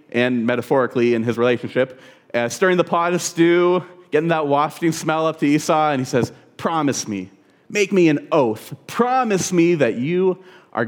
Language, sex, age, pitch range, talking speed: English, male, 30-49, 130-170 Hz, 175 wpm